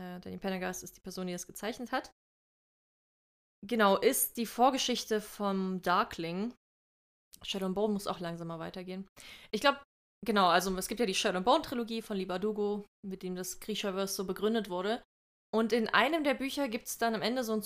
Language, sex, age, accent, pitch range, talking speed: German, female, 20-39, German, 185-225 Hz, 175 wpm